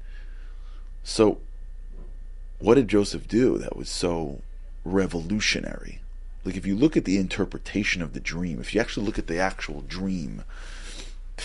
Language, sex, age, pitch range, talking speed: English, male, 30-49, 80-115 Hz, 145 wpm